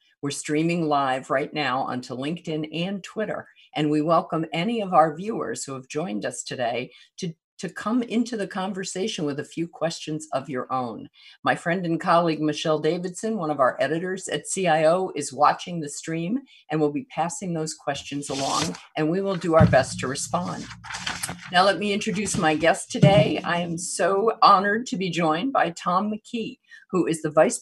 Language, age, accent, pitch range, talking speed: English, 50-69, American, 150-195 Hz, 185 wpm